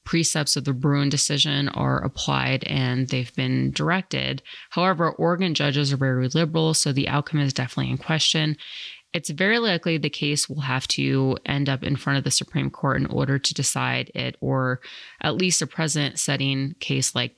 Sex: female